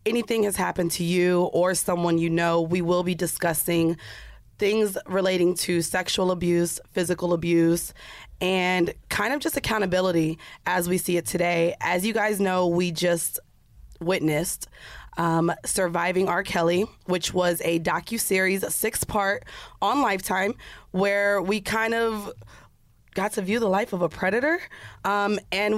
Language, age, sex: English, 20-39, female